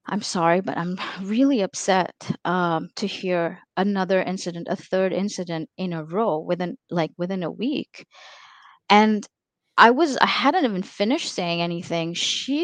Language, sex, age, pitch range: English, female, 30-49, 185-235 Hz